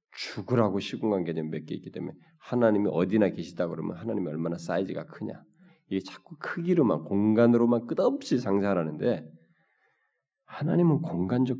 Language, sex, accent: Korean, male, native